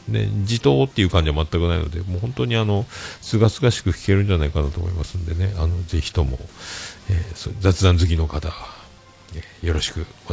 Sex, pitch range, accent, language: male, 85-105 Hz, native, Japanese